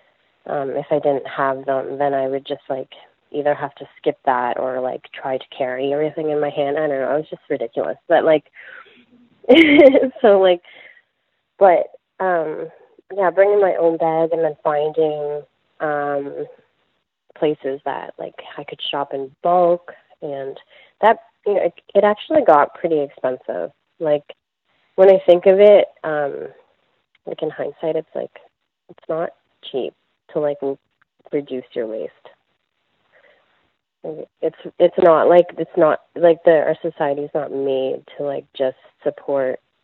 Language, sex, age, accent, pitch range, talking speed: English, female, 30-49, American, 145-180 Hz, 155 wpm